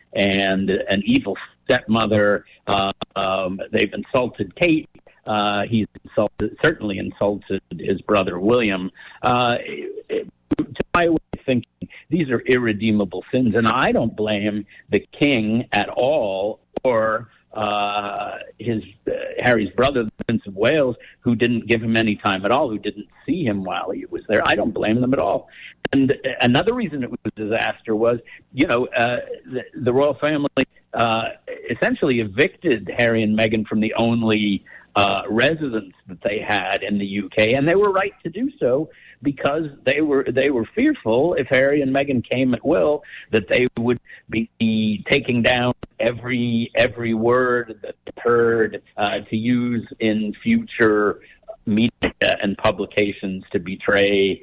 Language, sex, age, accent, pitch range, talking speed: English, male, 50-69, American, 105-130 Hz, 155 wpm